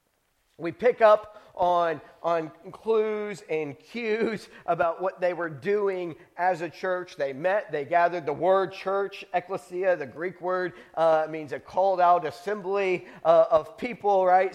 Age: 40-59